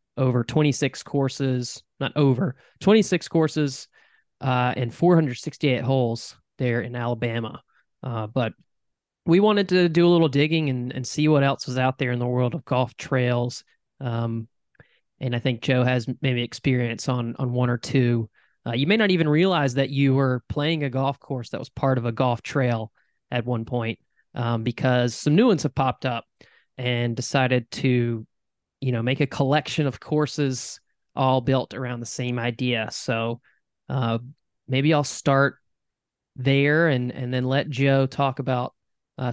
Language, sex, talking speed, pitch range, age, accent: English, male, 170 wpm, 120-140 Hz, 20-39, American